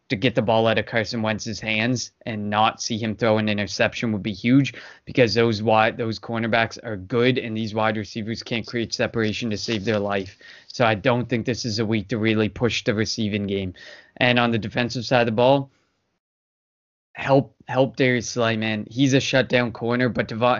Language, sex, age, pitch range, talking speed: English, male, 20-39, 110-125 Hz, 205 wpm